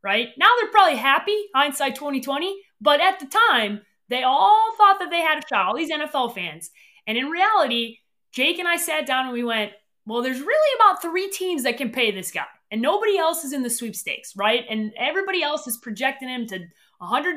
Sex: female